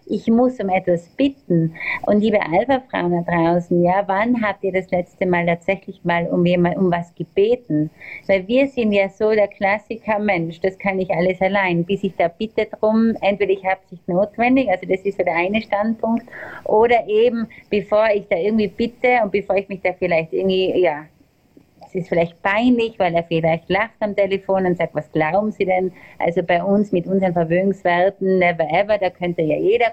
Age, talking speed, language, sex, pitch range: 30-49, 190 wpm, German, female, 185-225 Hz